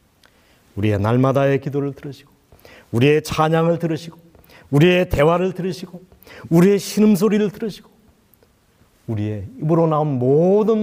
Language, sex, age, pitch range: Korean, male, 40-59, 140-220 Hz